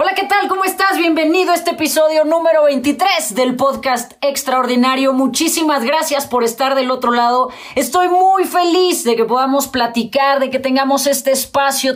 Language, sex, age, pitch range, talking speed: Spanish, female, 30-49, 220-280 Hz, 165 wpm